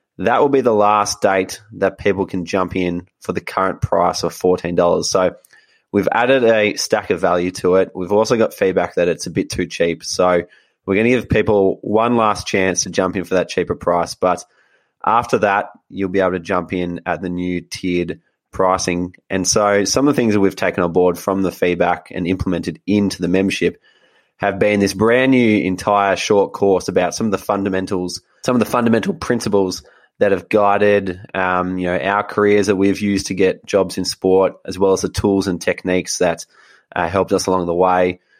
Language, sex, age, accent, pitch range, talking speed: English, male, 20-39, Australian, 90-105 Hz, 205 wpm